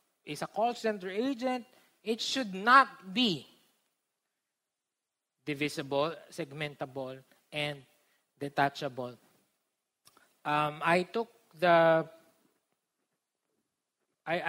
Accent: native